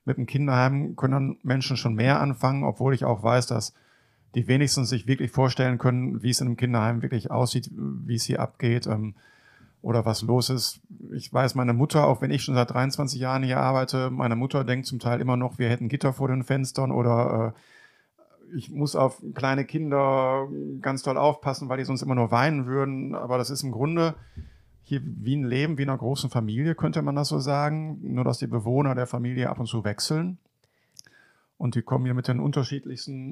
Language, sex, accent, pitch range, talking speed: German, male, German, 120-135 Hz, 200 wpm